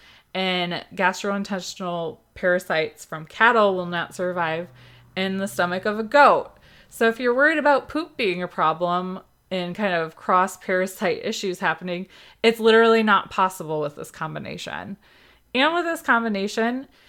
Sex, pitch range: female, 175-210 Hz